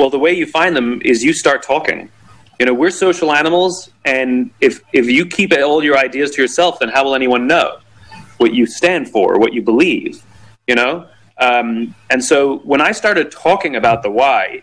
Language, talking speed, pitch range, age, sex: English, 200 wpm, 135-210 Hz, 30-49, male